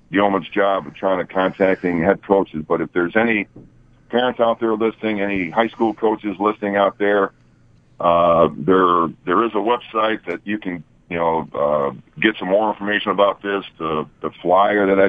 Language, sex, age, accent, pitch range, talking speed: English, male, 50-69, American, 85-105 Hz, 185 wpm